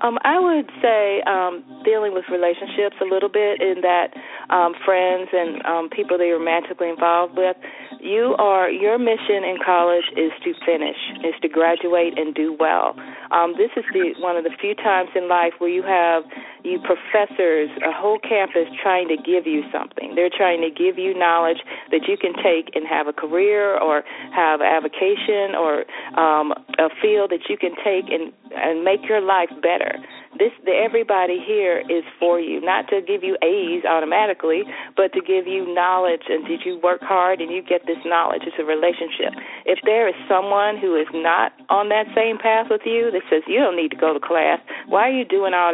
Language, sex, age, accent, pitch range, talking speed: English, female, 40-59, American, 170-215 Hz, 200 wpm